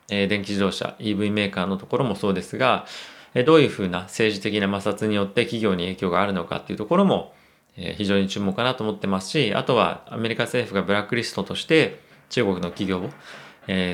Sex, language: male, Japanese